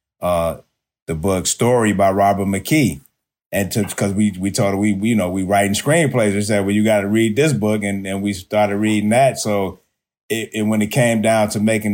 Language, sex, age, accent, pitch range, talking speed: English, male, 30-49, American, 100-115 Hz, 210 wpm